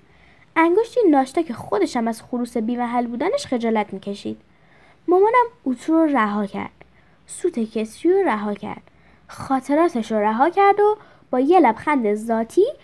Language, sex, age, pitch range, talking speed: Persian, female, 10-29, 220-345 Hz, 135 wpm